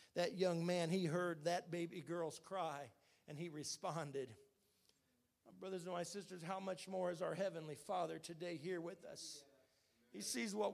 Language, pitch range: English, 180-225 Hz